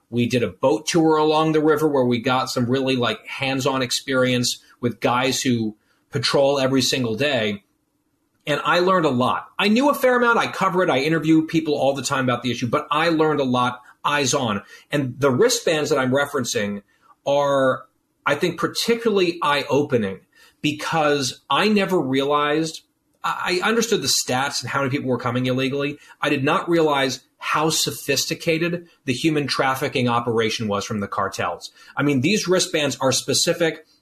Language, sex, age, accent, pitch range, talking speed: English, male, 40-59, American, 130-165 Hz, 175 wpm